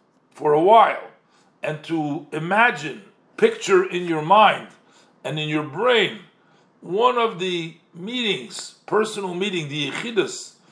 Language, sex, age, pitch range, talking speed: English, male, 50-69, 160-210 Hz, 125 wpm